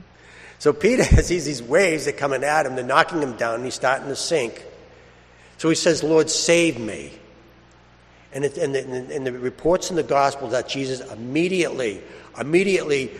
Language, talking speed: English, 170 wpm